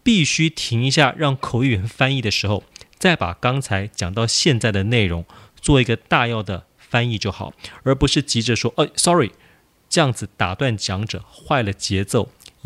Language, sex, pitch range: Chinese, male, 100-135 Hz